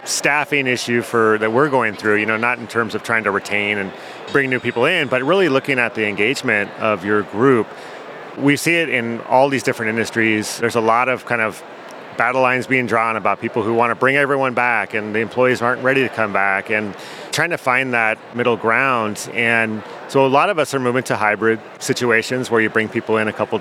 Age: 30-49